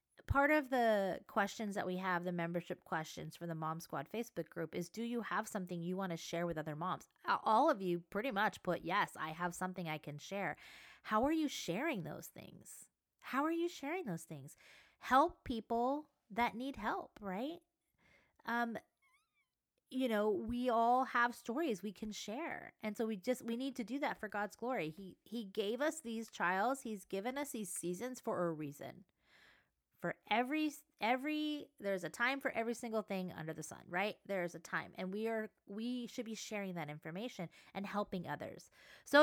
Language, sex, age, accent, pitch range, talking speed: English, female, 20-39, American, 180-250 Hz, 190 wpm